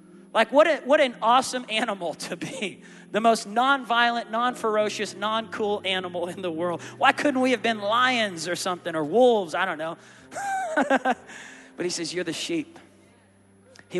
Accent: American